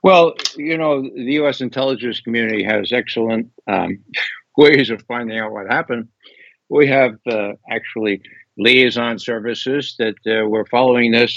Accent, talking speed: American, 145 wpm